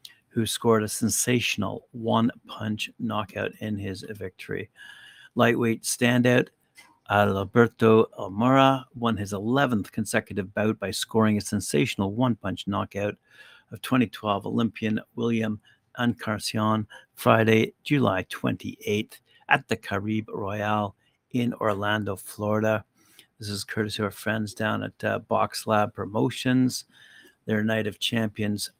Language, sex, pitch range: English, male, 105-115 Hz